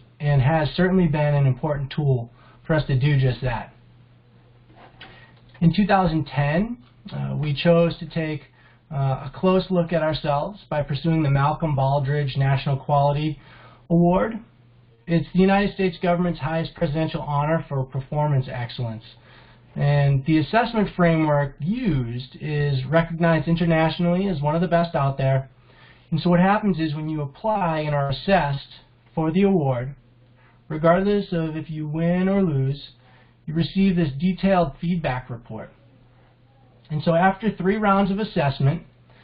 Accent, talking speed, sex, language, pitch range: American, 145 wpm, male, English, 130-165 Hz